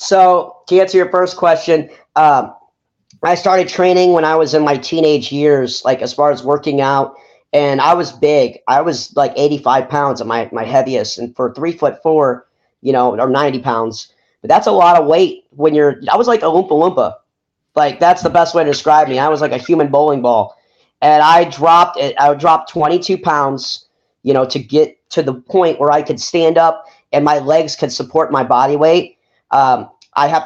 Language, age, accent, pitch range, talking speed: English, 40-59, American, 145-185 Hz, 215 wpm